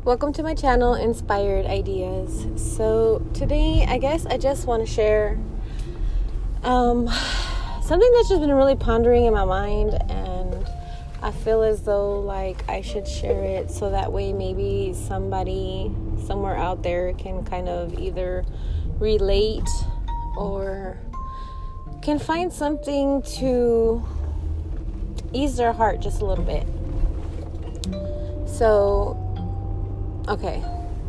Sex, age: female, 20-39